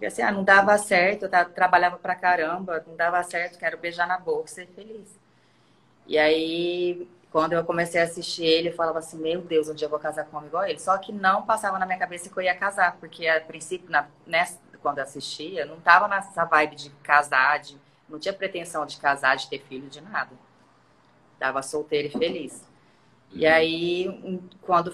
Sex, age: female, 20-39